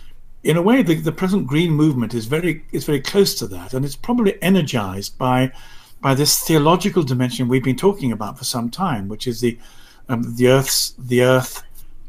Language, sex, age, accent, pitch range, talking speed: English, male, 50-69, British, 110-145 Hz, 200 wpm